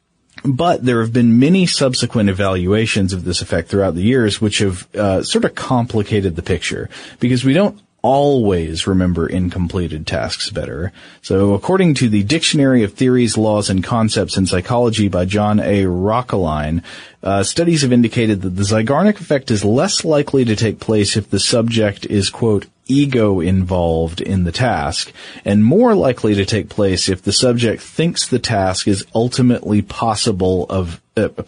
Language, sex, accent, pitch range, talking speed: English, male, American, 95-115 Hz, 160 wpm